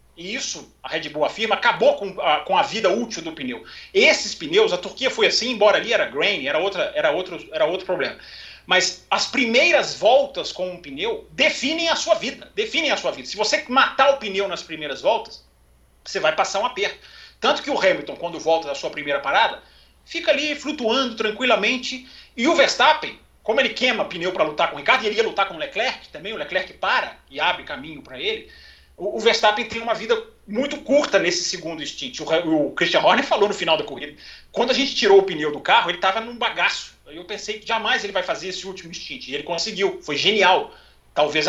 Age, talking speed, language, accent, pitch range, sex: 40-59, 210 wpm, Portuguese, Brazilian, 185-290 Hz, male